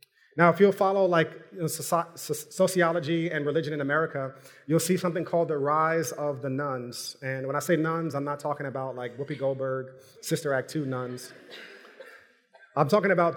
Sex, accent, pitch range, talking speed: male, American, 145-180 Hz, 170 wpm